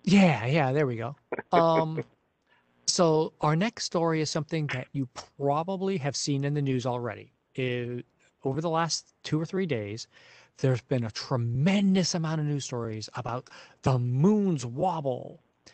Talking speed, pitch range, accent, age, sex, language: 155 wpm, 120-150 Hz, American, 40-59, male, English